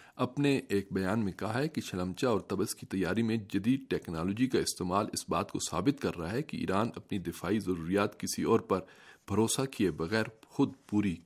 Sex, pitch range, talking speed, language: male, 95-130 Hz, 195 wpm, Urdu